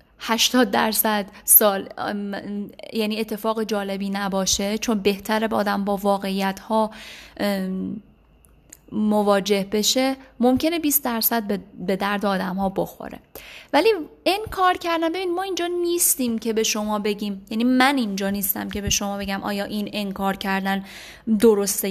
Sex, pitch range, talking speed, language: female, 205-250 Hz, 130 wpm, Persian